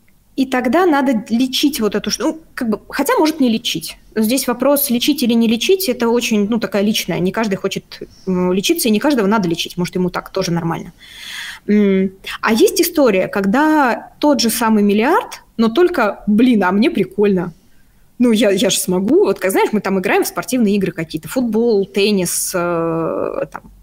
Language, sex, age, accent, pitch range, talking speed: Russian, female, 20-39, native, 190-260 Hz, 175 wpm